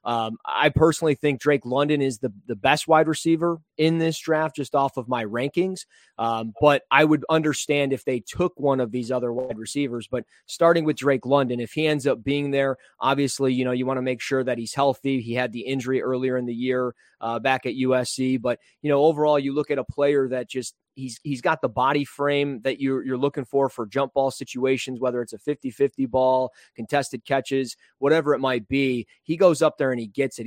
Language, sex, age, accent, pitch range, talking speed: English, male, 20-39, American, 130-150 Hz, 230 wpm